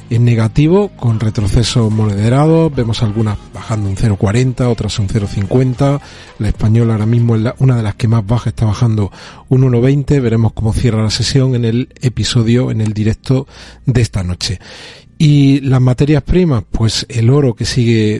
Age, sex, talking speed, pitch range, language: 40-59, male, 170 wpm, 110-130 Hz, Spanish